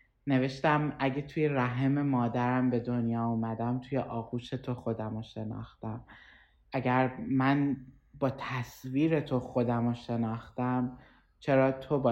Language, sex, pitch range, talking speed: Persian, male, 115-130 Hz, 125 wpm